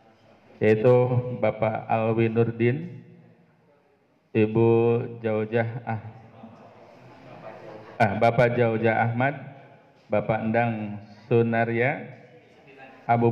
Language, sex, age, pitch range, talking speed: Malay, male, 50-69, 115-140 Hz, 70 wpm